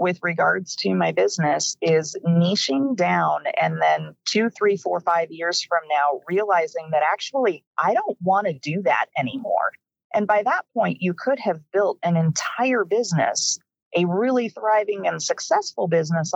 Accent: American